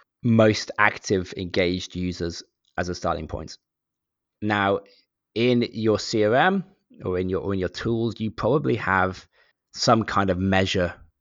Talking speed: 140 wpm